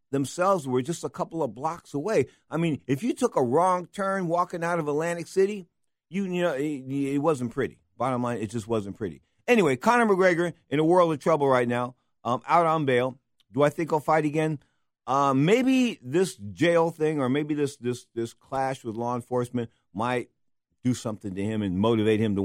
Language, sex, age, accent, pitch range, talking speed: English, male, 50-69, American, 120-160 Hz, 205 wpm